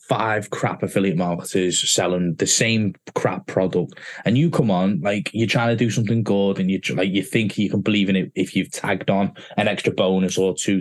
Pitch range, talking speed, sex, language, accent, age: 95-115 Hz, 215 wpm, male, English, British, 20-39